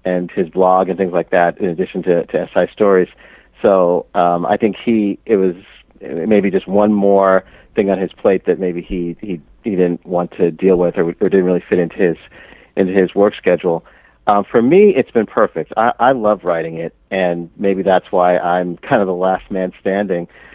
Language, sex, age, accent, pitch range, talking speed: English, male, 40-59, American, 85-100 Hz, 210 wpm